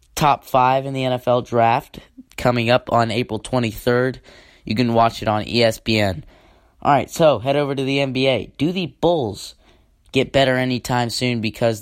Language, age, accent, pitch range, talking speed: English, 20-39, American, 105-125 Hz, 160 wpm